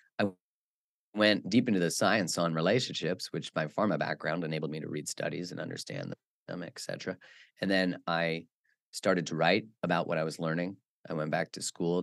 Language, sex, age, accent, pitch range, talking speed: English, male, 30-49, American, 80-95 Hz, 185 wpm